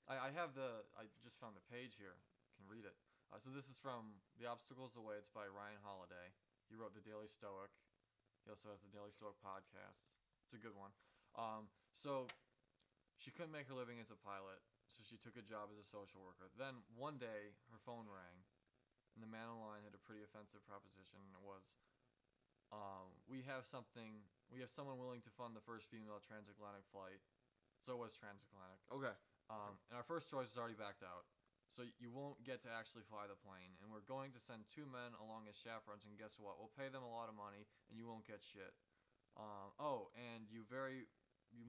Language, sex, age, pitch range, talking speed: English, male, 20-39, 100-125 Hz, 210 wpm